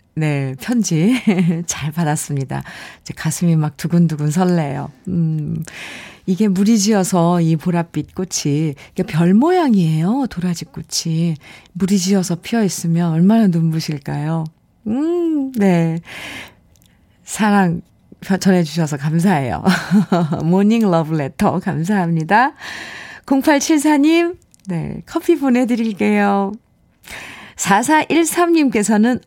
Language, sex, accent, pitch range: Korean, female, native, 170-225 Hz